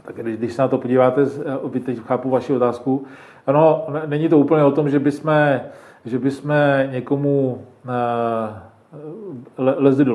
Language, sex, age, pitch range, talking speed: Czech, male, 40-59, 120-145 Hz, 140 wpm